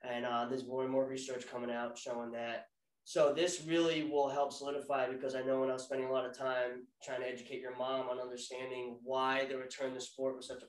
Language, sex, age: English, male, 20-39